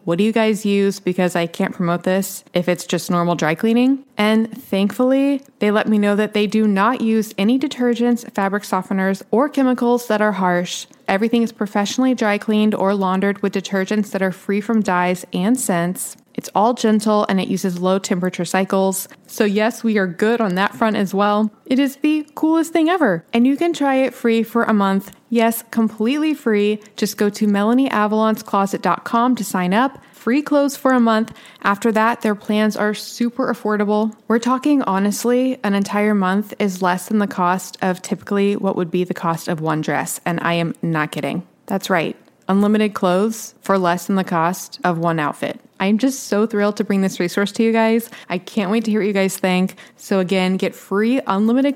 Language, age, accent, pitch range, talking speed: English, 20-39, American, 190-235 Hz, 200 wpm